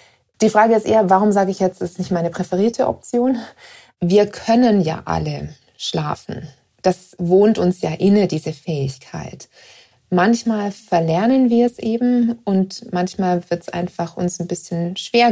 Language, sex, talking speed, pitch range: German, female, 155 wpm, 175-200 Hz